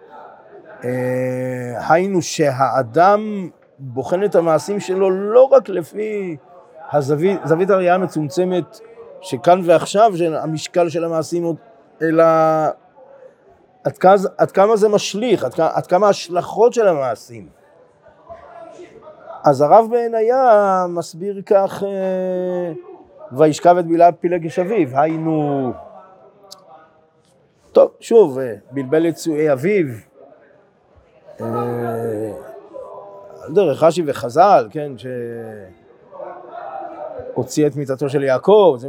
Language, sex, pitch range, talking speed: Hebrew, male, 140-205 Hz, 95 wpm